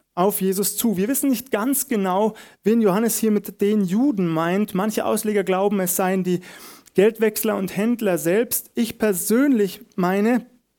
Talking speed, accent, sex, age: 155 wpm, German, male, 30-49